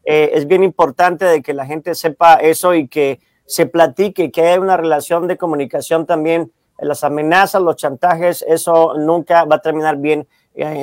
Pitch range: 155-190 Hz